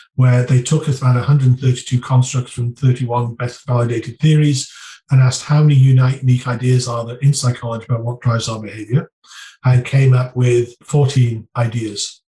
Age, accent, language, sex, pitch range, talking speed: 40-59, British, Hebrew, male, 120-135 Hz, 165 wpm